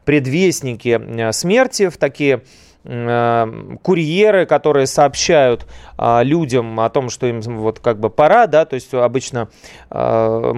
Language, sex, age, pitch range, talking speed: Russian, male, 30-49, 115-160 Hz, 130 wpm